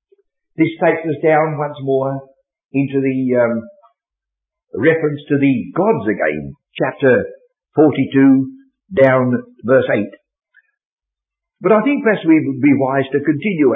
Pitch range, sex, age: 135-220 Hz, male, 60-79